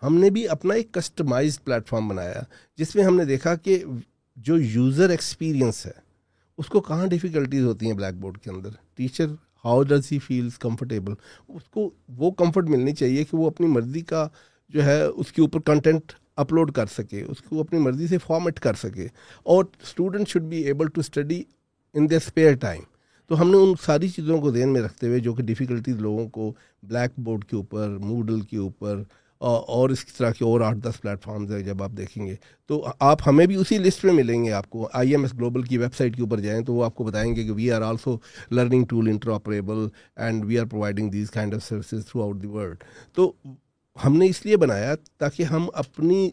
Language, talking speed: Urdu, 215 wpm